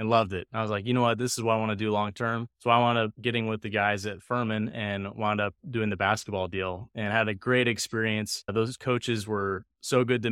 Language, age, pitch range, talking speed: English, 20-39, 100-115 Hz, 265 wpm